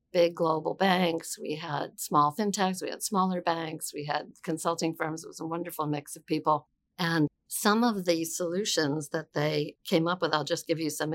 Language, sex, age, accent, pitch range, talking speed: English, female, 50-69, American, 150-170 Hz, 200 wpm